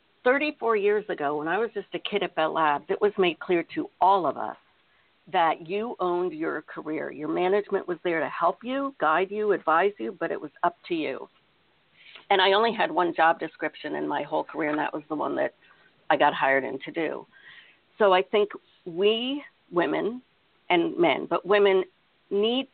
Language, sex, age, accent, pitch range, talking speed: English, female, 50-69, American, 165-215 Hz, 200 wpm